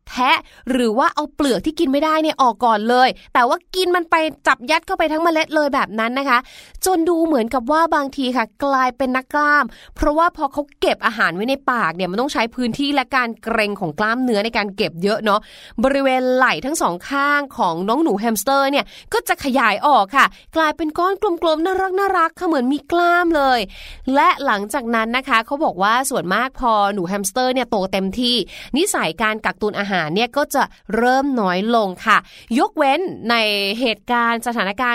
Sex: female